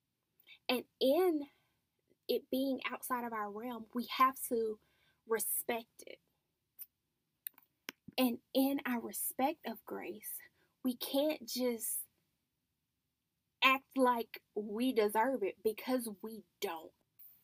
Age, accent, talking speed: 10-29, American, 105 wpm